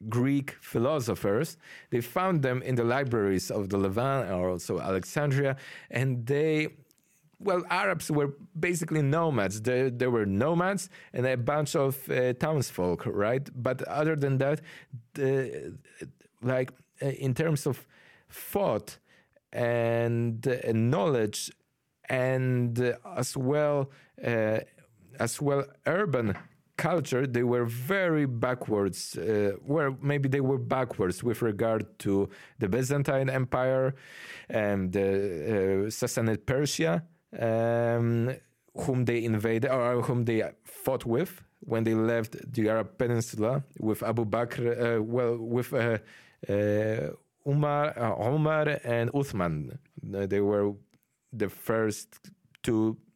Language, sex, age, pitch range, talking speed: Polish, male, 40-59, 115-140 Hz, 125 wpm